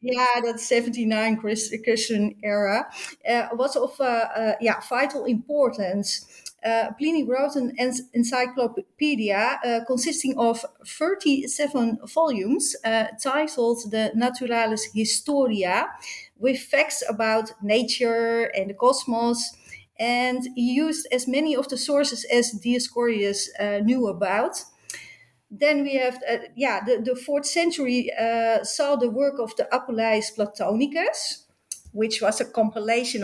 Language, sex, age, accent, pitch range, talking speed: English, female, 40-59, Dutch, 225-280 Hz, 125 wpm